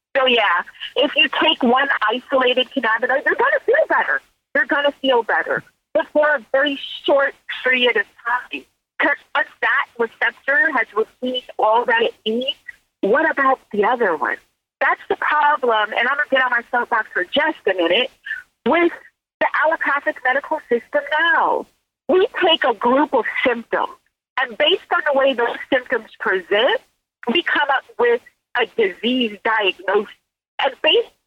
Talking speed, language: 165 wpm, English